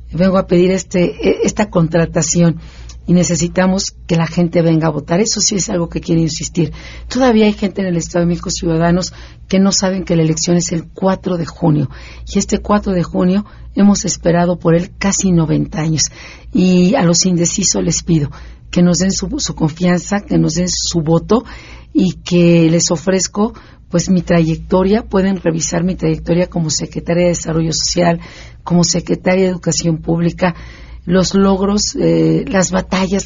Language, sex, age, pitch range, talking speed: Spanish, female, 50-69, 165-190 Hz, 175 wpm